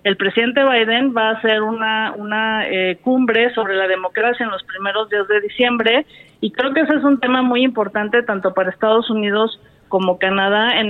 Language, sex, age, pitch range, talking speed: Spanish, female, 40-59, 200-235 Hz, 195 wpm